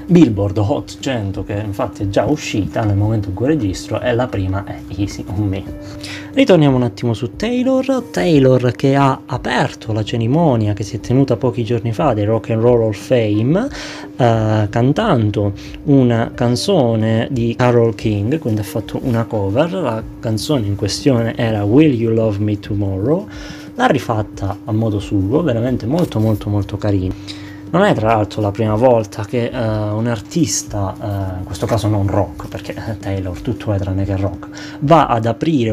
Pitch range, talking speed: 100-125 Hz, 170 wpm